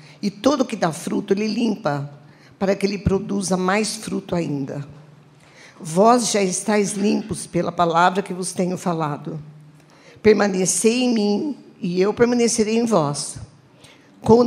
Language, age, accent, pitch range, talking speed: Portuguese, 50-69, Brazilian, 170-215 Hz, 140 wpm